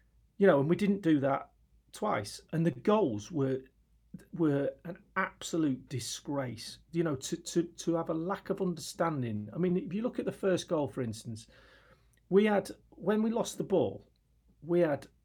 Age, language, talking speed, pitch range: 40-59, English, 180 wpm, 130-175 Hz